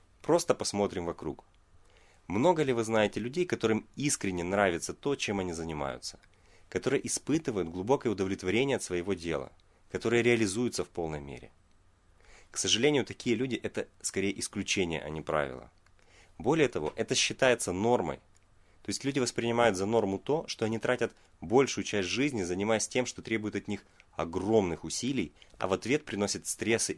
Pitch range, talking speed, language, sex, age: 90-115 Hz, 155 wpm, Russian, male, 30-49